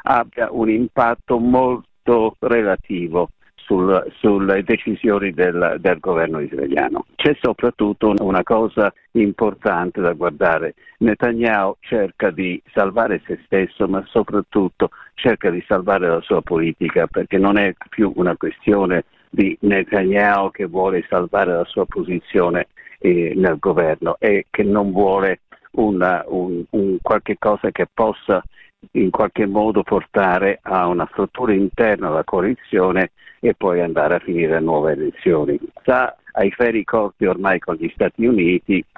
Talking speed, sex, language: 135 wpm, male, Italian